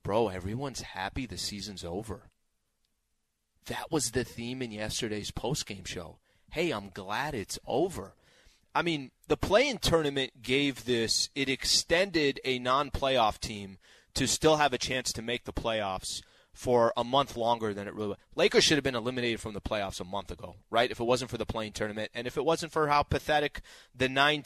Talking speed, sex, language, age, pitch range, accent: 185 wpm, male, English, 30-49, 115-155 Hz, American